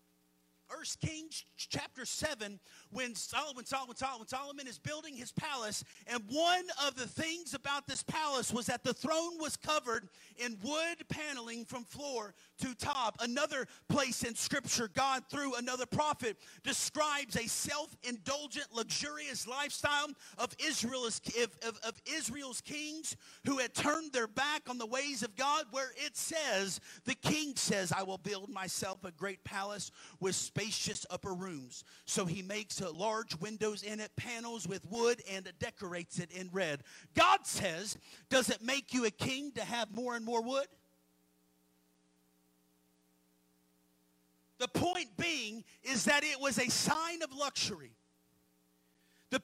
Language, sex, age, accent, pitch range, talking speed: English, male, 40-59, American, 190-285 Hz, 145 wpm